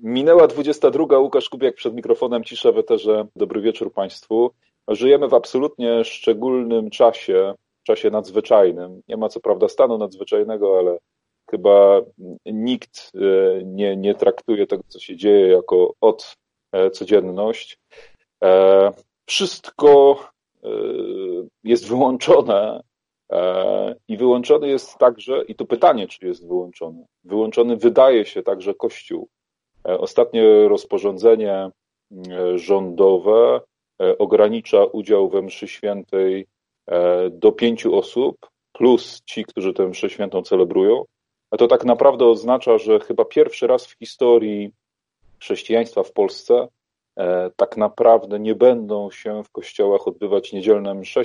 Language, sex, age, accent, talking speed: Polish, male, 40-59, native, 115 wpm